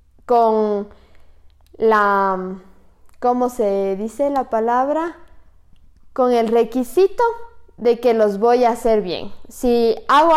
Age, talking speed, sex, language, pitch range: 20-39, 110 wpm, female, Spanish, 210-250 Hz